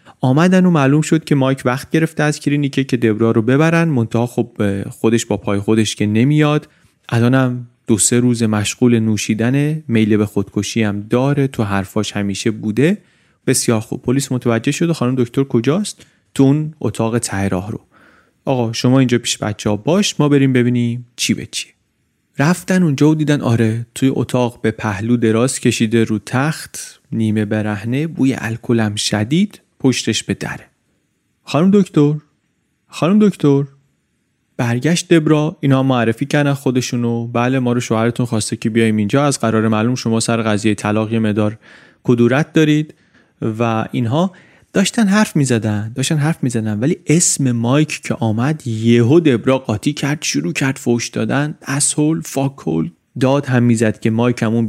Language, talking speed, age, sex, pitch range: Persian, 150 wpm, 30-49, male, 115-145 Hz